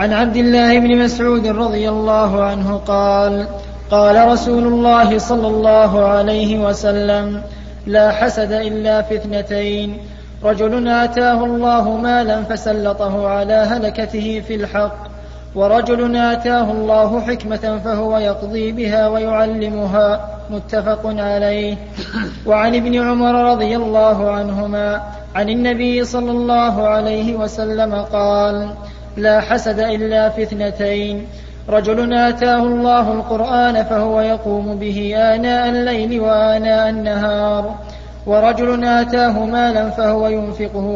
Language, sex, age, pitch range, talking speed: Arabic, male, 20-39, 210-235 Hz, 105 wpm